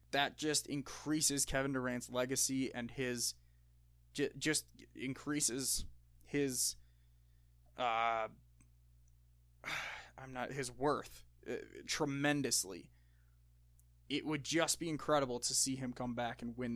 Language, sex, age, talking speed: English, male, 20-39, 105 wpm